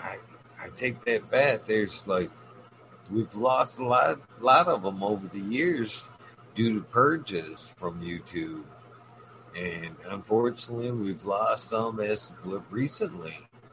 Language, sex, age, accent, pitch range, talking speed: English, male, 50-69, American, 95-120 Hz, 130 wpm